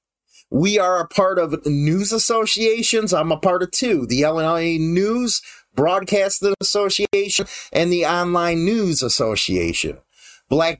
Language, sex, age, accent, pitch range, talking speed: English, male, 30-49, American, 175-235 Hz, 130 wpm